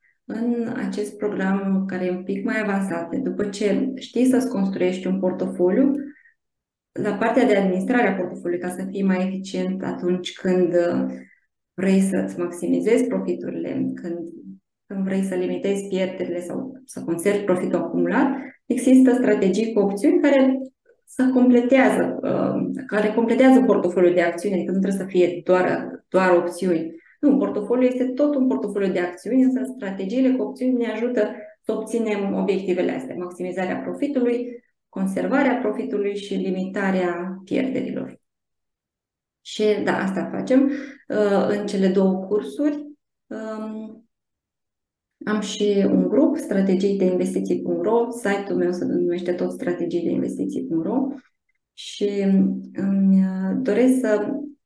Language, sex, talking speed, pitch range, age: Romanian, female, 125 wpm, 185-250 Hz, 20-39